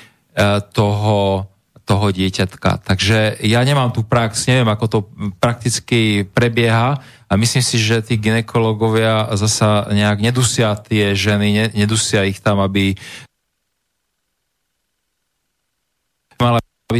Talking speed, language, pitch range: 105 wpm, Slovak, 105-120 Hz